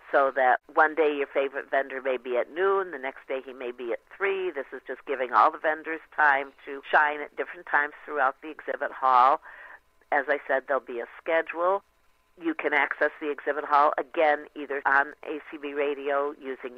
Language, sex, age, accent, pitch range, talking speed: English, female, 50-69, American, 135-170 Hz, 195 wpm